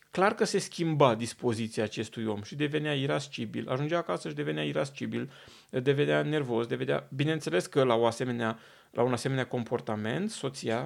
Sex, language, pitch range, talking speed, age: male, Romanian, 125-180 Hz, 140 wpm, 30-49